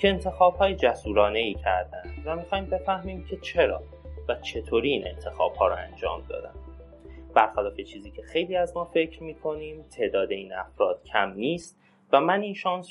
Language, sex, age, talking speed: Persian, male, 30-49, 165 wpm